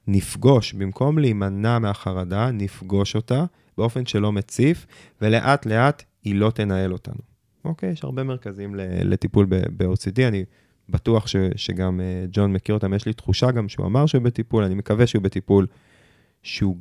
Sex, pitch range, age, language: male, 95-125 Hz, 20-39, Hebrew